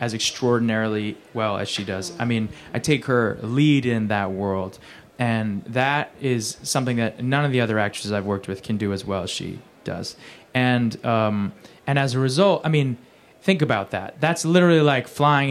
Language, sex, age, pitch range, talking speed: English, male, 20-39, 110-135 Hz, 195 wpm